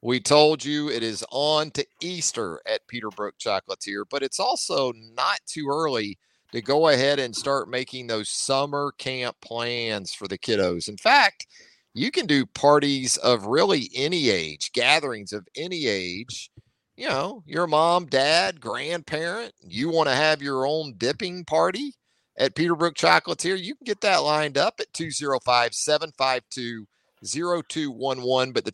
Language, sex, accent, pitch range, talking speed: English, male, American, 120-155 Hz, 150 wpm